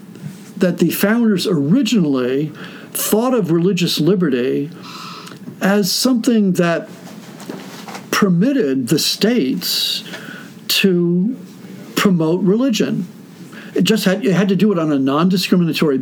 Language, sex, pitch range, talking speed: English, male, 170-220 Hz, 100 wpm